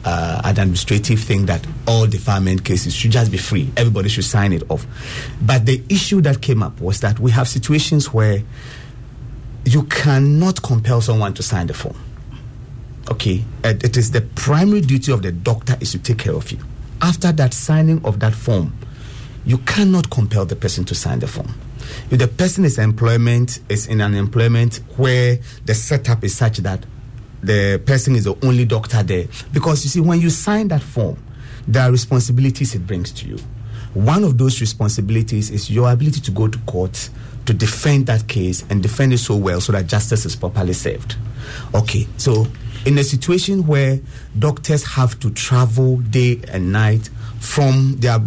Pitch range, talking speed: 110-130 Hz, 180 wpm